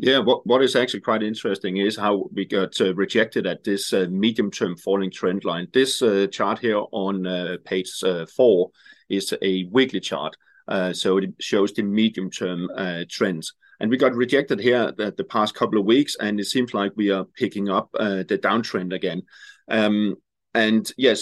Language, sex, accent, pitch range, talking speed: English, male, Danish, 95-115 Hz, 190 wpm